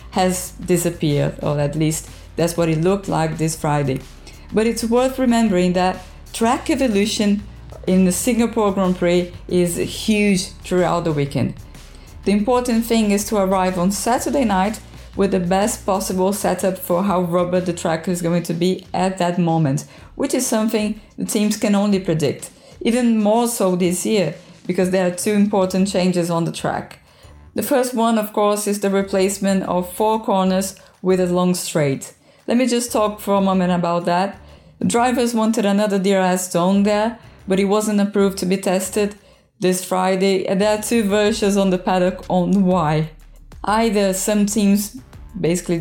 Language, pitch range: English, 175-210 Hz